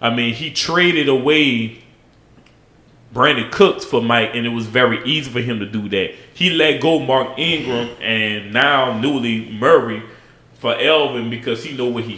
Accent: American